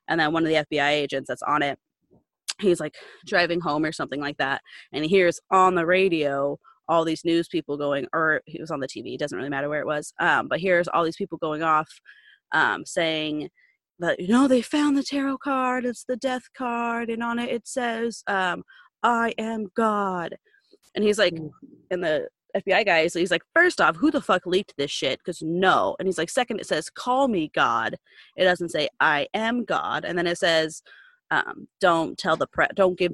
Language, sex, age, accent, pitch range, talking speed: English, female, 30-49, American, 165-245 Hz, 215 wpm